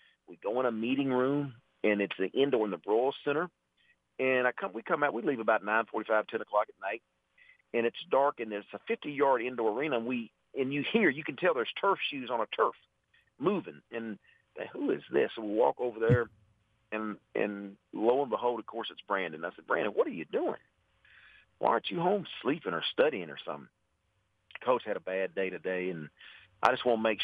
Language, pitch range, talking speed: English, 105-130 Hz, 220 wpm